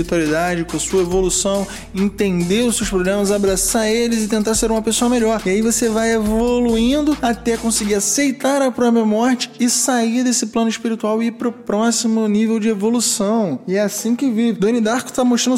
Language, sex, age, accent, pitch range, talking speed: Portuguese, male, 20-39, Brazilian, 200-240 Hz, 185 wpm